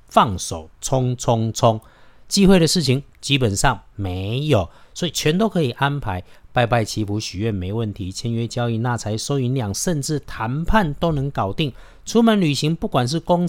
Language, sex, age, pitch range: Chinese, male, 50-69, 105-140 Hz